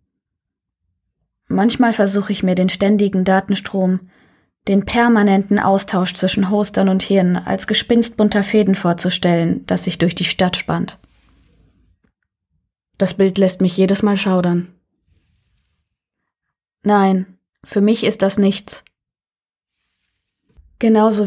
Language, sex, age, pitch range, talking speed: German, female, 20-39, 185-215 Hz, 105 wpm